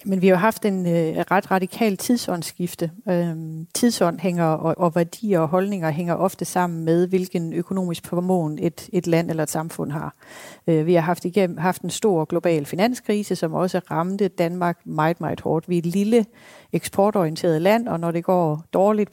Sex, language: female, Danish